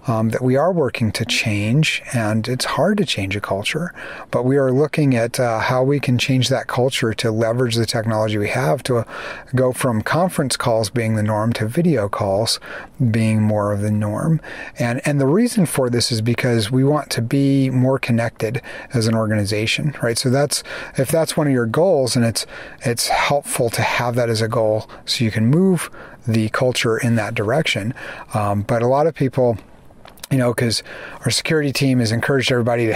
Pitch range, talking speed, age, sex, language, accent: 110-140 Hz, 200 wpm, 40-59, male, English, American